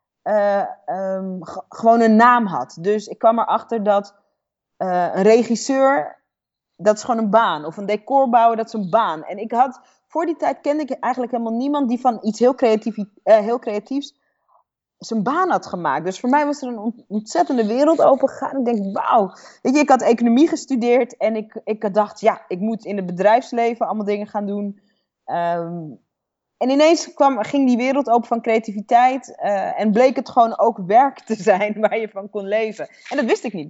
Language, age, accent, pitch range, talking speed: Dutch, 30-49, Dutch, 210-275 Hz, 200 wpm